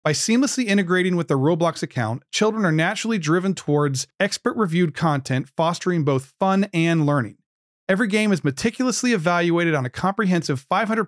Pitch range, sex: 145-200 Hz, male